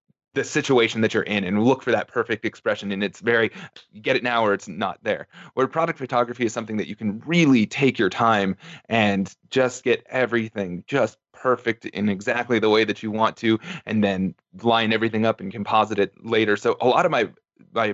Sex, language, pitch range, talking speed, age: male, English, 105-120 Hz, 210 wpm, 20-39